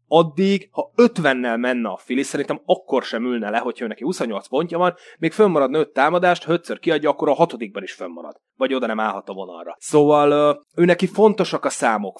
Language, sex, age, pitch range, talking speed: Hungarian, male, 30-49, 115-165 Hz, 195 wpm